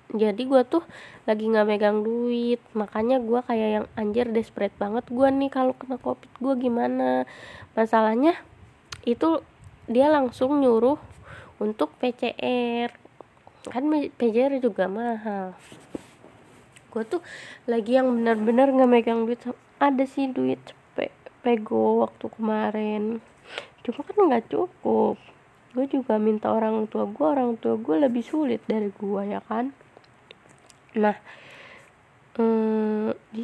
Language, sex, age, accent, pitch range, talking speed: Indonesian, female, 20-39, native, 210-255 Hz, 120 wpm